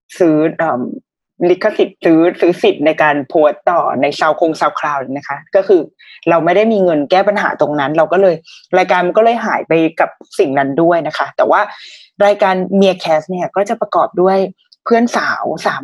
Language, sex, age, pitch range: Thai, female, 20-39, 165-230 Hz